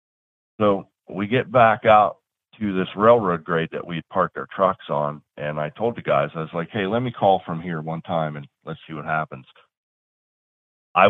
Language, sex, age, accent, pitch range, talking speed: English, male, 40-59, American, 80-100 Hz, 200 wpm